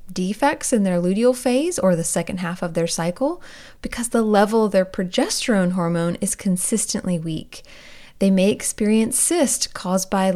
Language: English